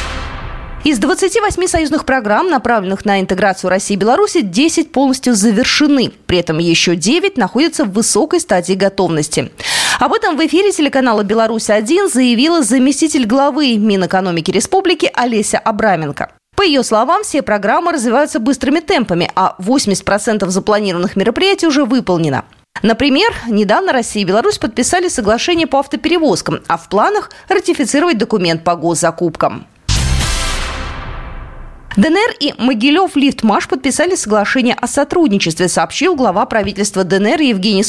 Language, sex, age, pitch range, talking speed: Russian, female, 20-39, 190-305 Hz, 125 wpm